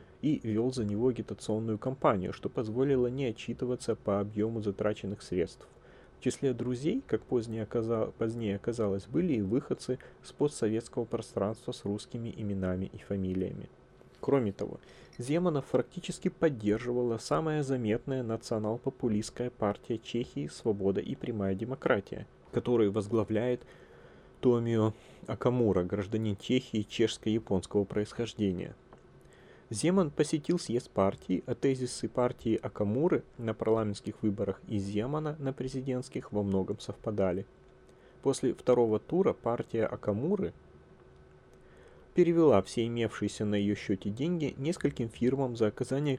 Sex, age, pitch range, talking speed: male, 30-49, 105-130 Hz, 115 wpm